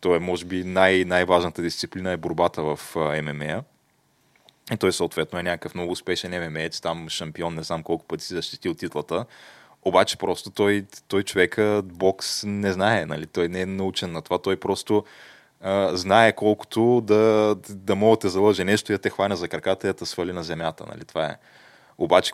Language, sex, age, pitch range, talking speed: Bulgarian, male, 20-39, 85-105 Hz, 185 wpm